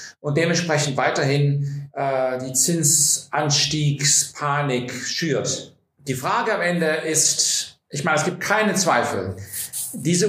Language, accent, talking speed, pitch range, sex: German, German, 110 wpm, 135-170 Hz, male